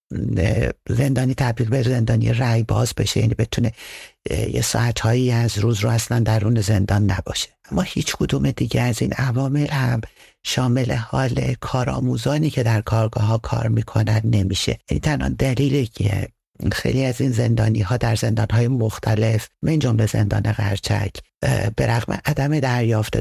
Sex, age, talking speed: male, 60-79, 145 wpm